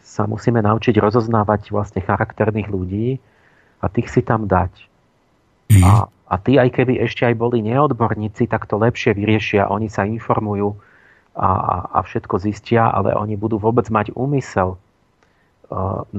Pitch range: 100-115 Hz